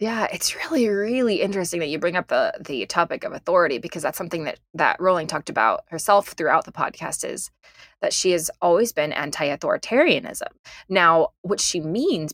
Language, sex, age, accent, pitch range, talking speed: English, female, 20-39, American, 160-215 Hz, 180 wpm